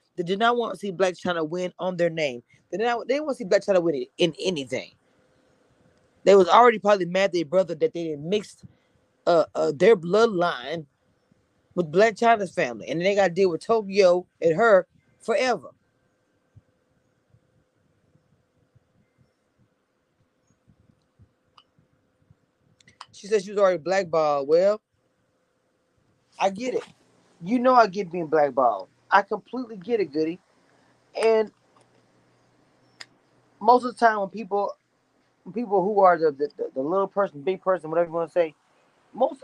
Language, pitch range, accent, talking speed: English, 165-220 Hz, American, 150 wpm